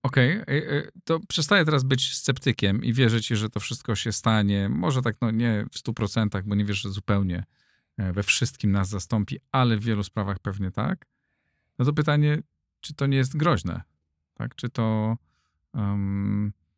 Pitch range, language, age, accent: 100-115 Hz, Polish, 40-59, native